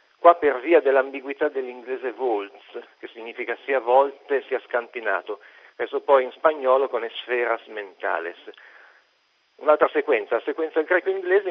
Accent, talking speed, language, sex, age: native, 125 wpm, Italian, male, 50-69